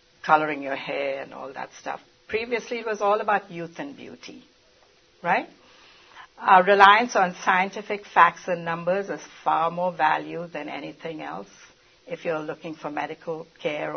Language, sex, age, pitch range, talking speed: English, female, 60-79, 165-220 Hz, 155 wpm